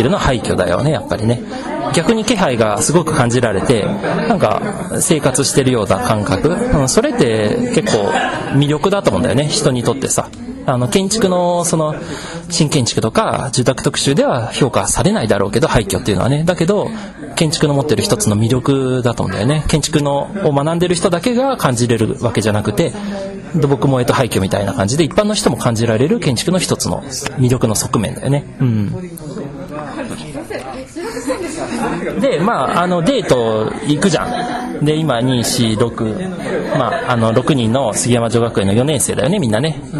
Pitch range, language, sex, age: 120-175 Hz, Japanese, male, 40-59